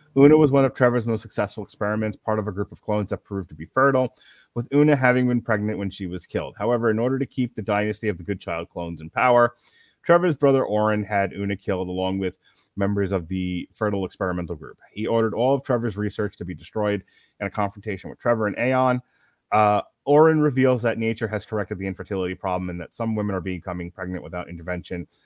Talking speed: 215 wpm